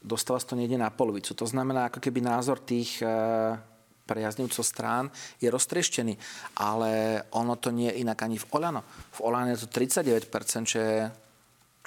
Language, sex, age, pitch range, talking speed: Slovak, male, 40-59, 110-125 Hz, 155 wpm